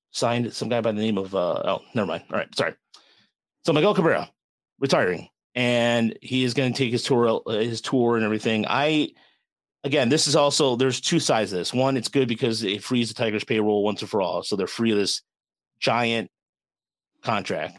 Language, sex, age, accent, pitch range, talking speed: English, male, 30-49, American, 110-130 Hz, 200 wpm